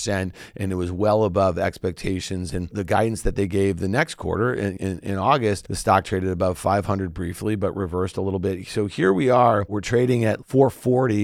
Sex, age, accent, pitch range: male, 40-59, American, 95-120 Hz